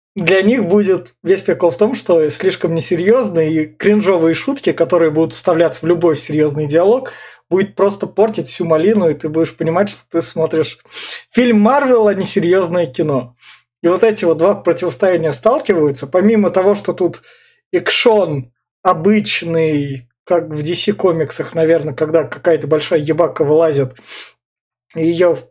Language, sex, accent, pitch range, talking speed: Russian, male, native, 155-205 Hz, 150 wpm